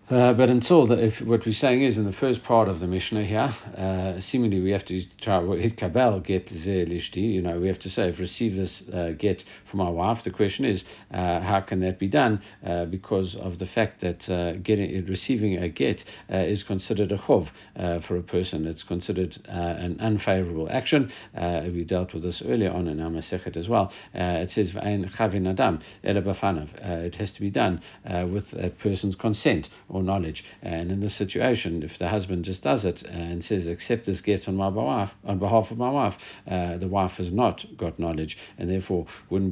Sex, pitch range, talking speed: male, 90-105 Hz, 200 wpm